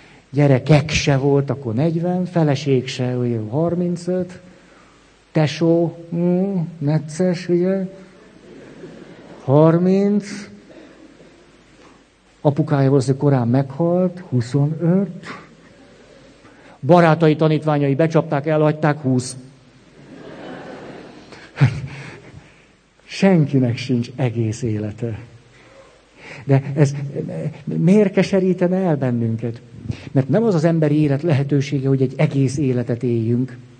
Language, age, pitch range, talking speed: Hungarian, 60-79, 120-160 Hz, 80 wpm